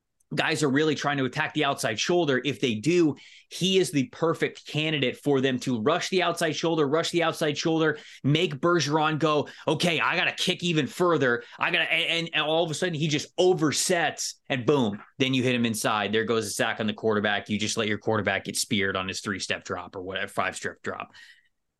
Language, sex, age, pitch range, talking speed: English, male, 20-39, 130-205 Hz, 225 wpm